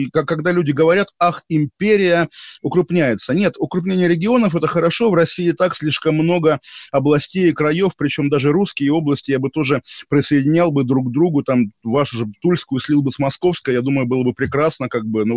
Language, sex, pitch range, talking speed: Russian, male, 130-165 Hz, 185 wpm